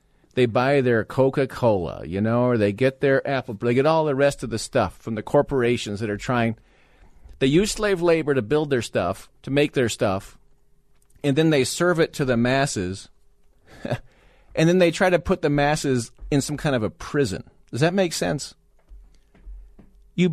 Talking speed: 190 wpm